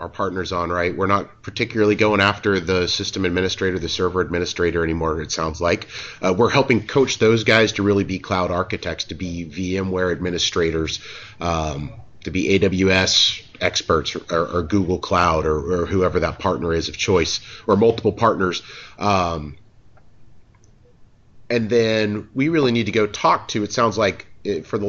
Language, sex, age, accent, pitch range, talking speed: English, male, 30-49, American, 90-115 Hz, 165 wpm